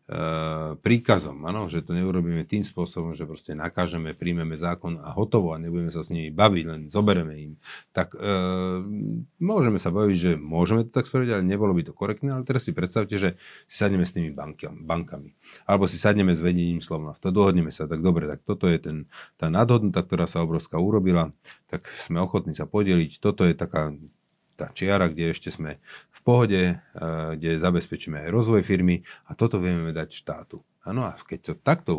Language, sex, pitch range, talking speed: Slovak, male, 85-105 Hz, 190 wpm